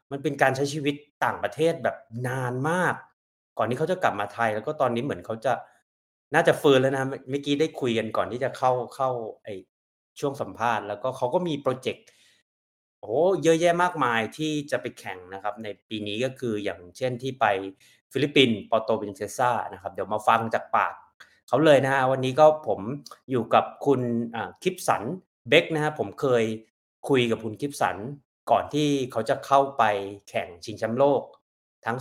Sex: male